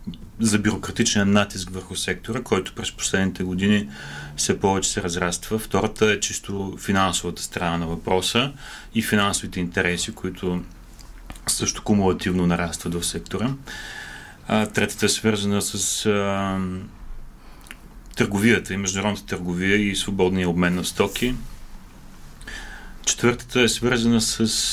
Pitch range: 95-110 Hz